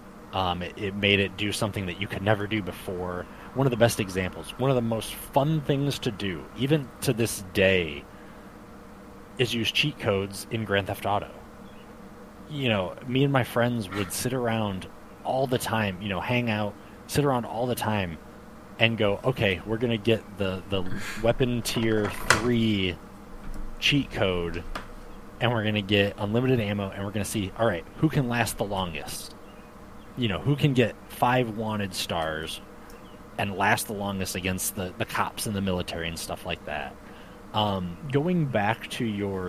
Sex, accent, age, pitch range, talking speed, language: male, American, 20-39, 100-125 Hz, 180 wpm, English